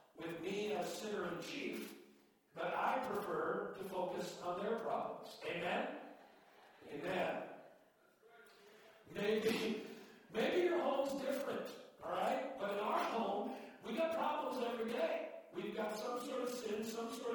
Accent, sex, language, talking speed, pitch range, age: American, male, English, 140 wpm, 170-240 Hz, 50-69